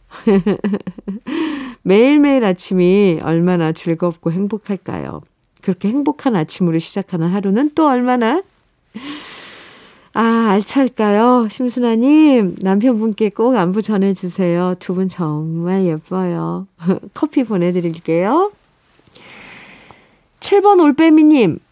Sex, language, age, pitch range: female, Korean, 50-69, 175-250 Hz